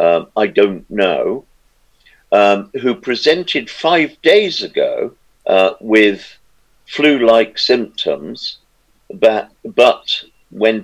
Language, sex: English, male